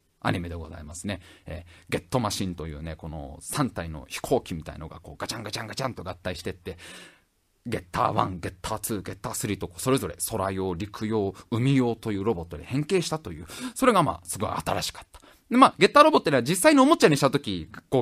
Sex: male